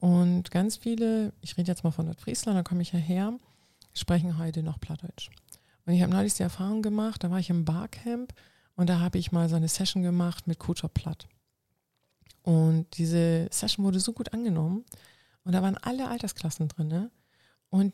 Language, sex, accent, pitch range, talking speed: German, female, German, 170-200 Hz, 190 wpm